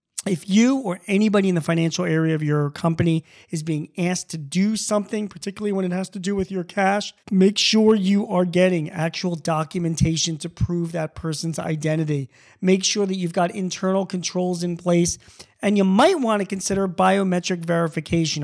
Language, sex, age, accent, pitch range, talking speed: English, male, 40-59, American, 155-195 Hz, 180 wpm